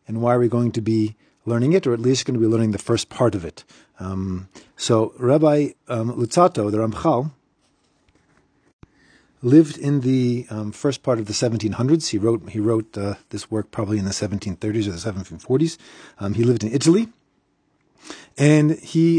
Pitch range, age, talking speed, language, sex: 110-140 Hz, 40-59, 180 wpm, English, male